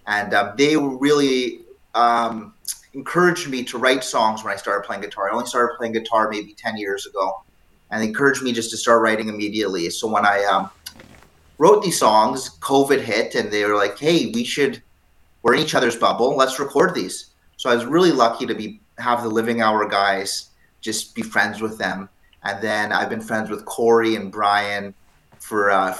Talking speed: 200 wpm